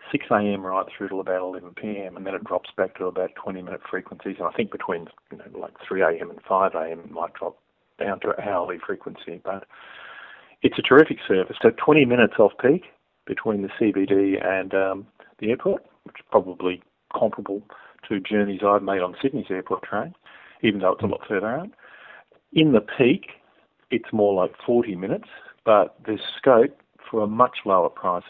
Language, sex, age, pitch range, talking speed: English, male, 40-59, 95-110 Hz, 190 wpm